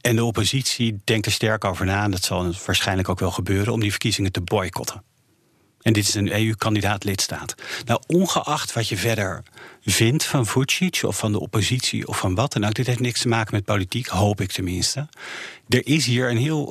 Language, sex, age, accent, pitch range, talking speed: Dutch, male, 40-59, Dutch, 105-130 Hz, 210 wpm